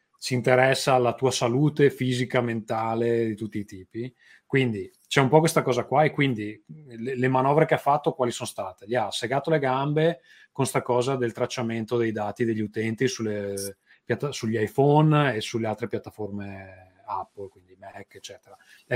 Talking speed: 170 wpm